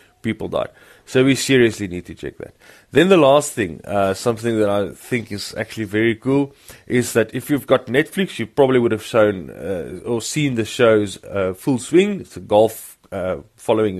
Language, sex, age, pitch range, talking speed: English, male, 30-49, 100-120 Hz, 195 wpm